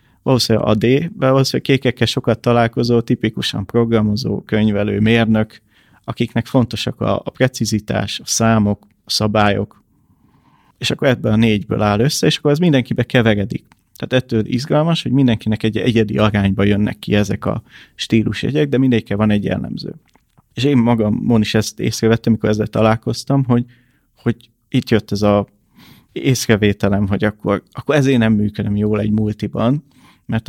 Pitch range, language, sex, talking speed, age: 105-125 Hz, Hungarian, male, 155 wpm, 30-49